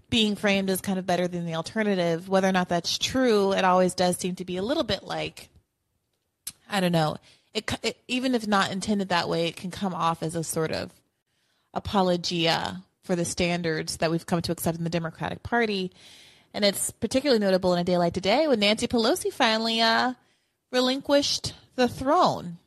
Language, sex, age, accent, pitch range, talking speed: English, female, 30-49, American, 180-215 Hz, 195 wpm